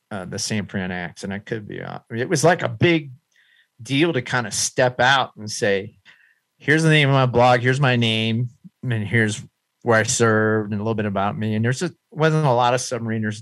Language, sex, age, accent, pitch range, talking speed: English, male, 50-69, American, 105-135 Hz, 225 wpm